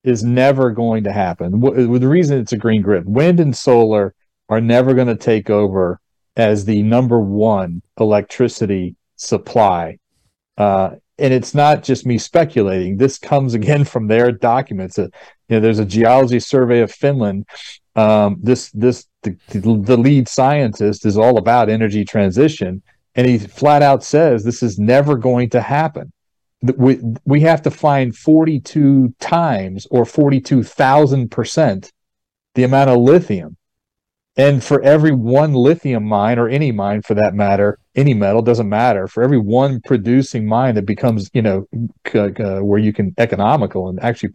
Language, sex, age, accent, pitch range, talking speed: English, male, 40-59, American, 105-140 Hz, 160 wpm